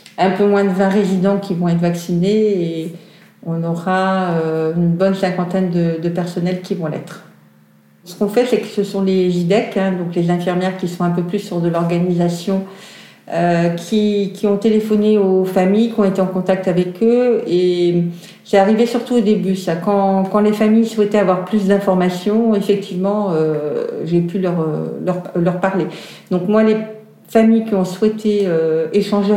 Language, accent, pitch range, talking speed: French, French, 175-205 Hz, 180 wpm